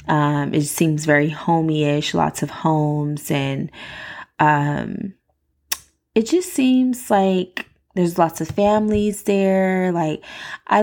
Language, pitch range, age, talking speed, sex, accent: English, 150-205 Hz, 20-39, 115 wpm, female, American